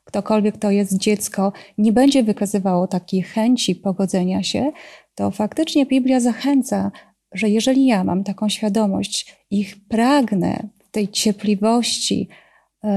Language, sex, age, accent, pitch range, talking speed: Polish, female, 30-49, native, 205-245 Hz, 125 wpm